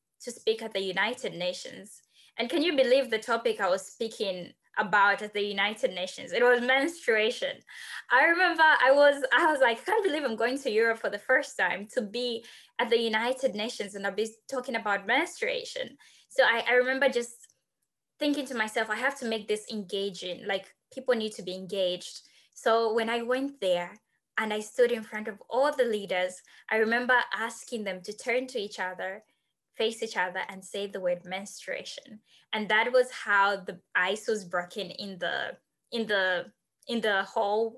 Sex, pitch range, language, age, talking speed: female, 195-250 Hz, English, 10-29, 190 wpm